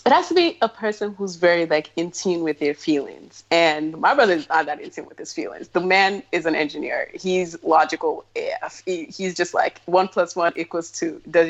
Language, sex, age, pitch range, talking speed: English, female, 20-39, 160-195 Hz, 215 wpm